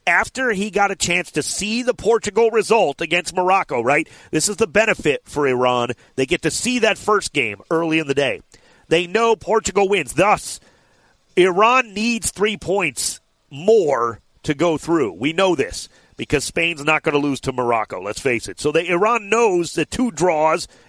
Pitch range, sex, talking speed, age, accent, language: 150-215 Hz, male, 185 wpm, 40-59, American, English